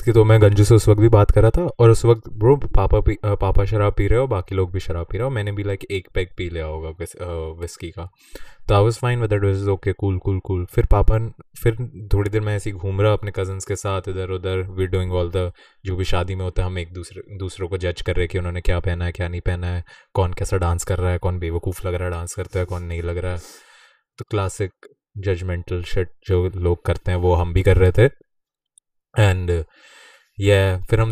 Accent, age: native, 20-39